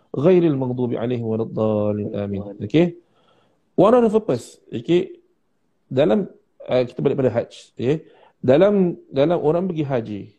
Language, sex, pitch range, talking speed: Malay, male, 130-165 Hz, 135 wpm